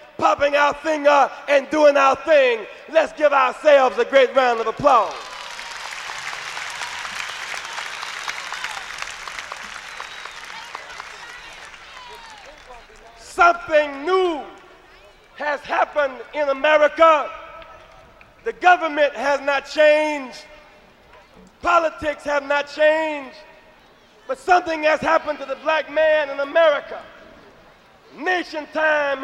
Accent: American